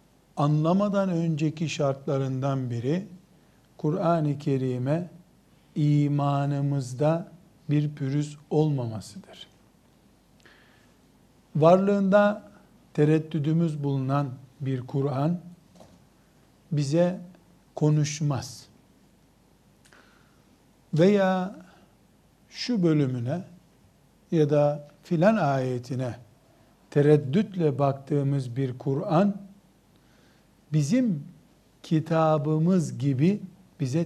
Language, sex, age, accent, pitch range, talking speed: Turkish, male, 50-69, native, 135-175 Hz, 55 wpm